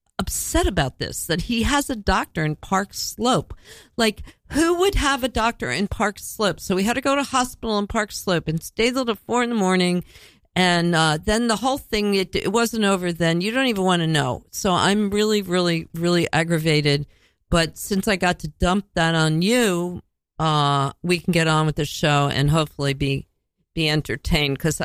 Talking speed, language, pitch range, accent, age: 200 wpm, English, 155-195 Hz, American, 50-69